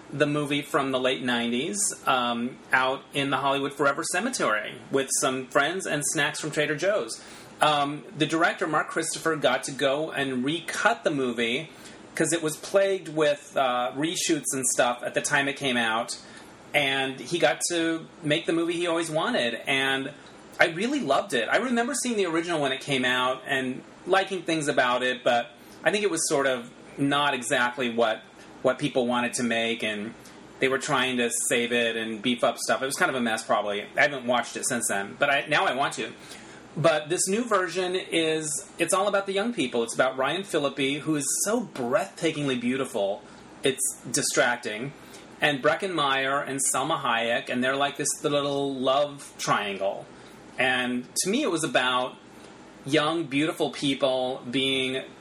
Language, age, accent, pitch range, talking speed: English, 30-49, American, 125-160 Hz, 185 wpm